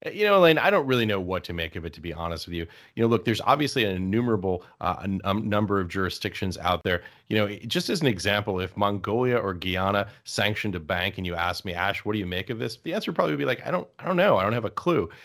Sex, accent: male, American